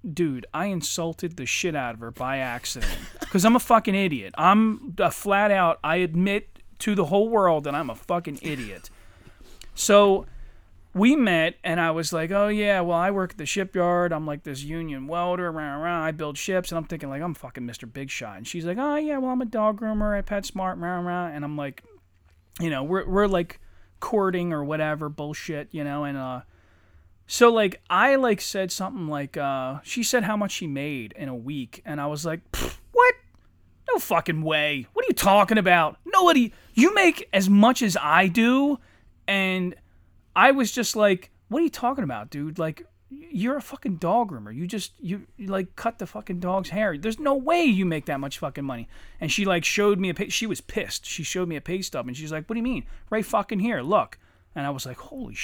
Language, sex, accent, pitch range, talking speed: English, male, American, 145-210 Hz, 215 wpm